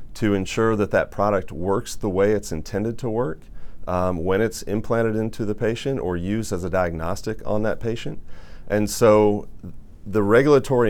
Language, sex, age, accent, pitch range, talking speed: English, male, 40-59, American, 90-110 Hz, 170 wpm